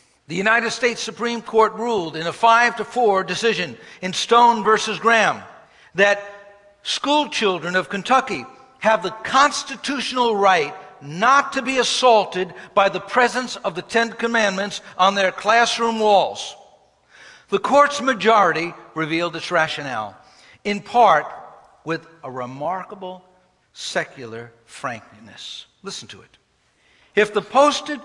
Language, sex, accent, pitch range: English, male, American, 175-230 Hz